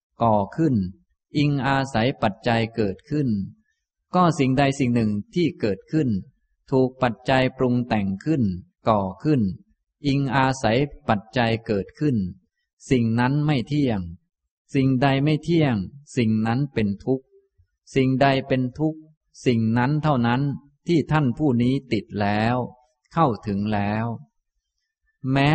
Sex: male